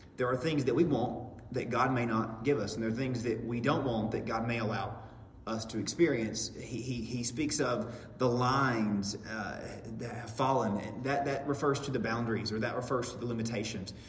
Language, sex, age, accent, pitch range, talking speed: English, male, 30-49, American, 110-125 Hz, 215 wpm